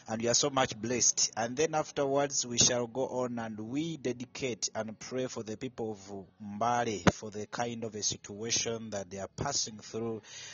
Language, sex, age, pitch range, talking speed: English, male, 30-49, 105-120 Hz, 195 wpm